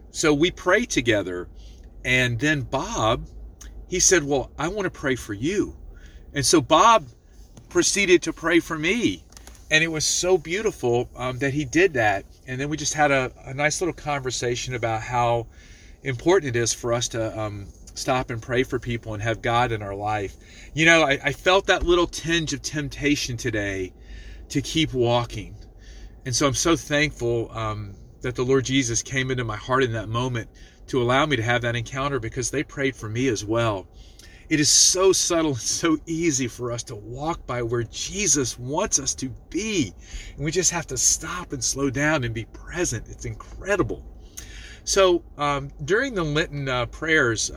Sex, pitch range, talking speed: male, 110-145 Hz, 185 wpm